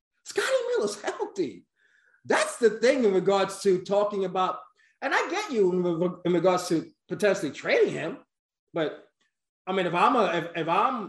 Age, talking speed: 20-39, 170 wpm